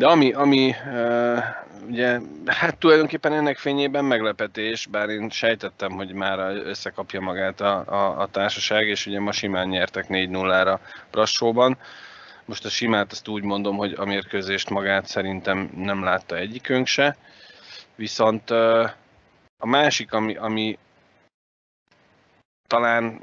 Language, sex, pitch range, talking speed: Hungarian, male, 100-120 Hz, 125 wpm